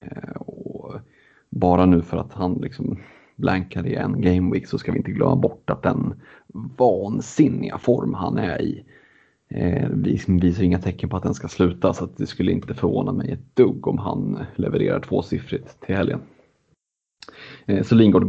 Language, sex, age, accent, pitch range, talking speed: Swedish, male, 30-49, native, 90-100 Hz, 165 wpm